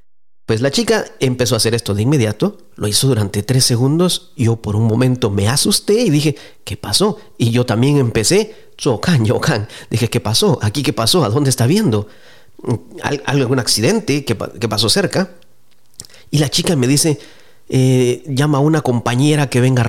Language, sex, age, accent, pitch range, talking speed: English, male, 40-59, Mexican, 110-145 Hz, 185 wpm